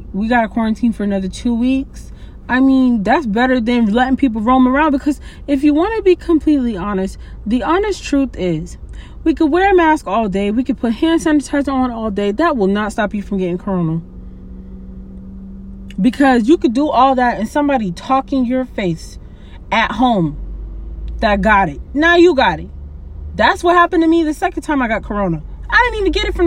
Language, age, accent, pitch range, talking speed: English, 20-39, American, 190-275 Hz, 200 wpm